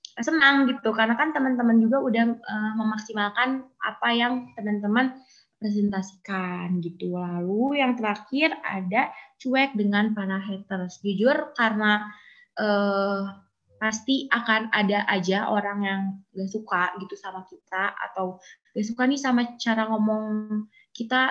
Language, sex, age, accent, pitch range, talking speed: Indonesian, female, 20-39, native, 200-245 Hz, 125 wpm